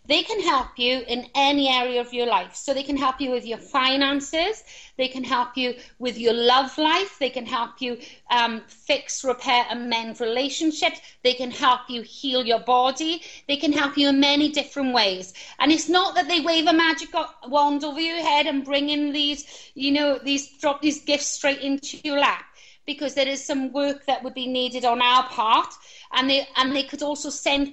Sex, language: female, English